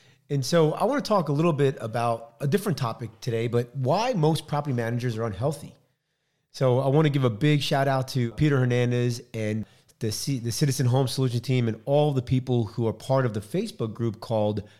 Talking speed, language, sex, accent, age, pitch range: 215 wpm, English, male, American, 30-49, 110-135 Hz